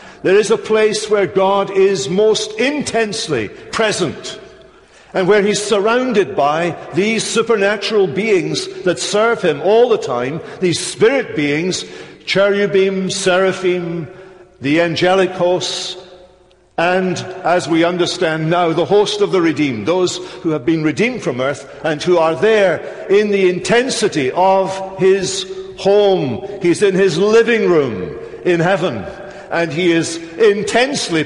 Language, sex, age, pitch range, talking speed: English, male, 60-79, 170-215 Hz, 135 wpm